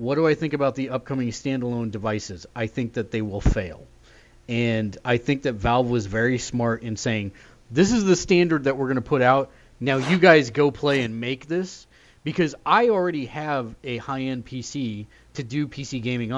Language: English